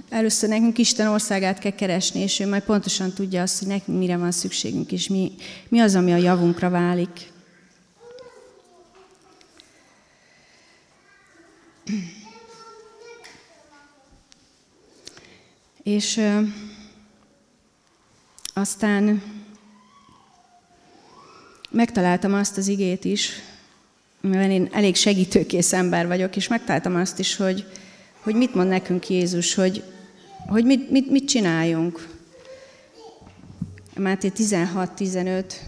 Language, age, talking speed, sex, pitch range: Hungarian, 30-49, 95 wpm, female, 180-215 Hz